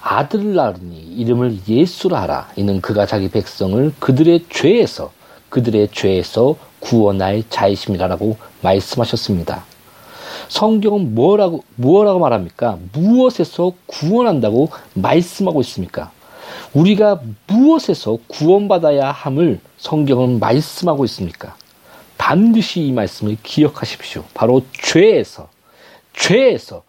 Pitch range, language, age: 110-170 Hz, Korean, 40-59